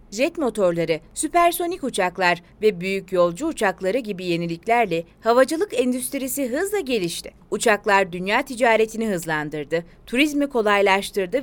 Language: Turkish